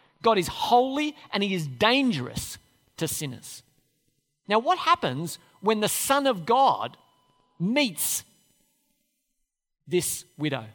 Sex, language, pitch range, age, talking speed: male, English, 155-255 Hz, 50-69, 110 wpm